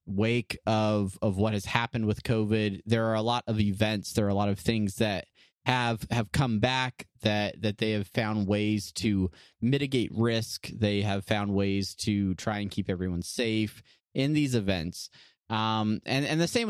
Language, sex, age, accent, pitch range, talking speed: English, male, 20-39, American, 100-115 Hz, 185 wpm